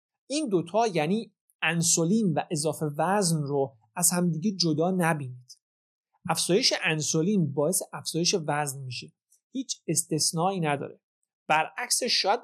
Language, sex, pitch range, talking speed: Persian, male, 150-195 Hz, 110 wpm